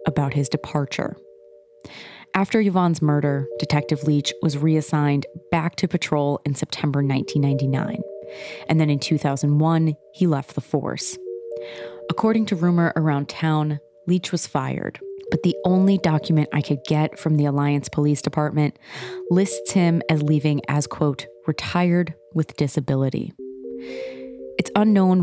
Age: 20-39